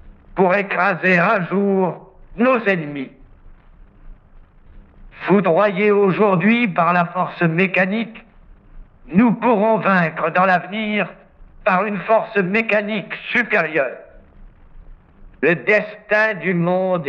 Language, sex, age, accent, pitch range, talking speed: French, male, 60-79, French, 180-220 Hz, 90 wpm